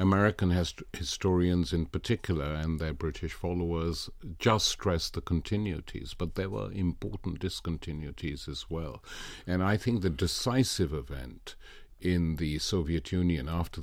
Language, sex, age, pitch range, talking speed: English, male, 60-79, 80-100 Hz, 130 wpm